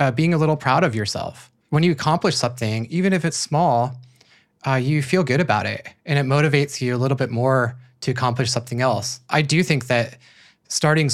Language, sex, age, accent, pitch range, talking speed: English, male, 20-39, American, 120-145 Hz, 205 wpm